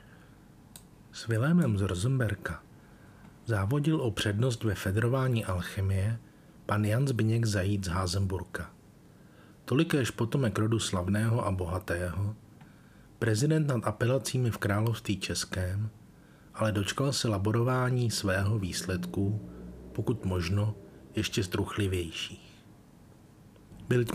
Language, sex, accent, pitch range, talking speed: Czech, male, native, 100-120 Hz, 95 wpm